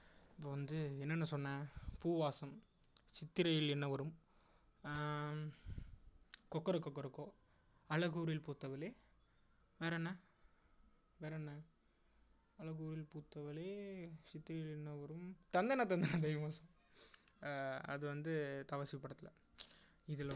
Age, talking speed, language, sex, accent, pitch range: 20-39, 90 wpm, Tamil, male, native, 140-165 Hz